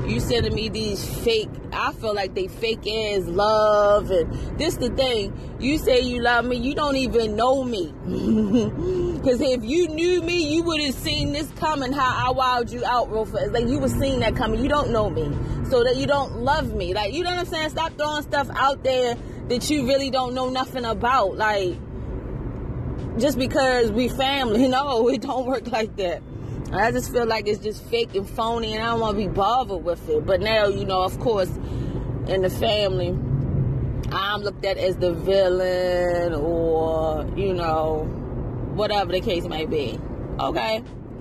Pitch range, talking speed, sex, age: 185-260 Hz, 190 wpm, female, 20-39